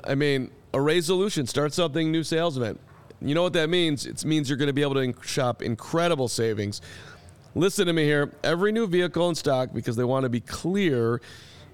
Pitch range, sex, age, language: 115-150 Hz, male, 40-59, English